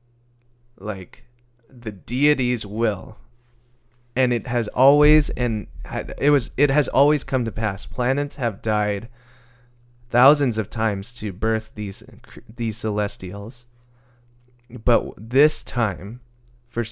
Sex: male